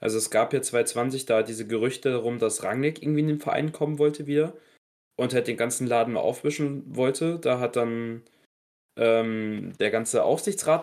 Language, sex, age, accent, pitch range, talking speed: German, male, 20-39, German, 120-155 Hz, 185 wpm